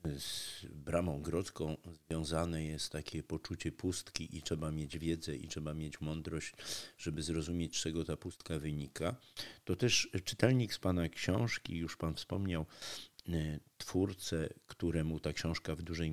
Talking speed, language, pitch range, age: 140 wpm, Polish, 80-95 Hz, 50-69